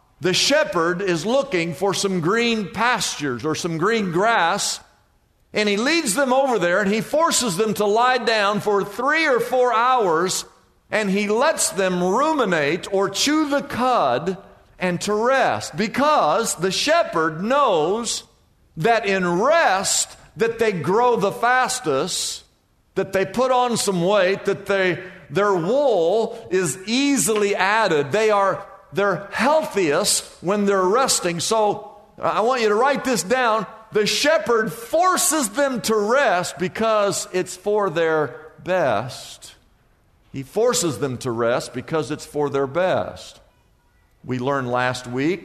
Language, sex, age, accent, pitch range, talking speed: English, male, 50-69, American, 160-230 Hz, 140 wpm